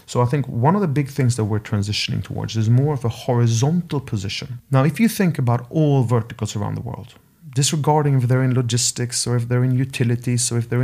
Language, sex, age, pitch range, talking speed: German, male, 40-59, 120-135 Hz, 225 wpm